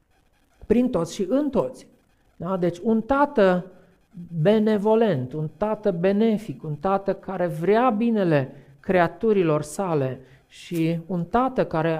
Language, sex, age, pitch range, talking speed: Romanian, male, 50-69, 150-210 Hz, 115 wpm